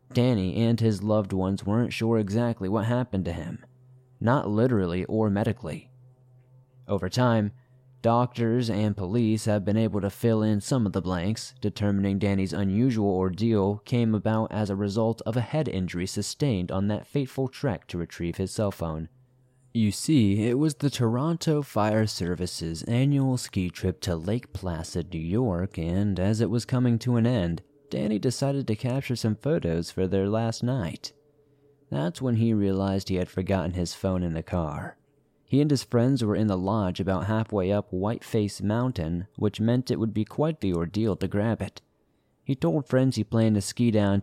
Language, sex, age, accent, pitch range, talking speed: English, male, 20-39, American, 95-120 Hz, 180 wpm